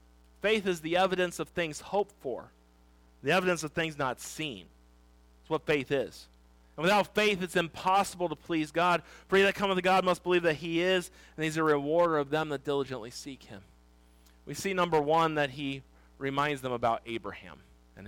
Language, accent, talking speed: English, American, 195 wpm